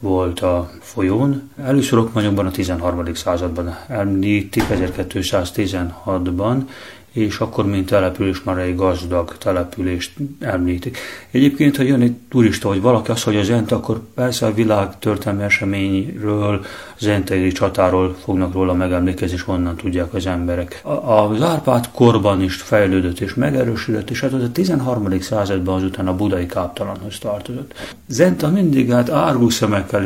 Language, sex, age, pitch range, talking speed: Hungarian, male, 30-49, 90-110 Hz, 135 wpm